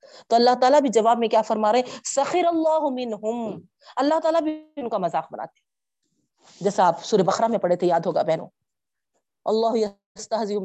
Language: Urdu